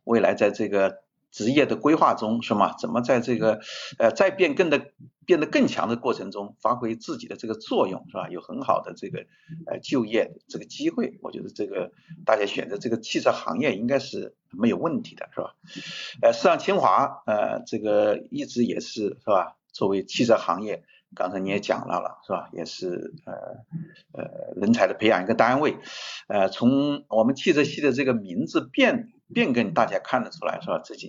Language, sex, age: Chinese, male, 50-69